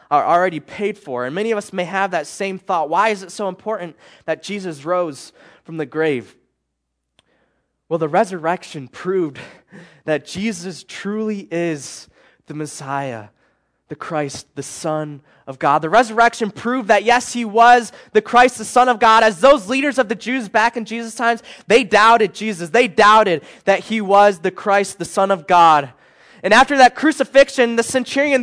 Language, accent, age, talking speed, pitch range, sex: English, American, 20-39, 175 wpm, 155-220 Hz, male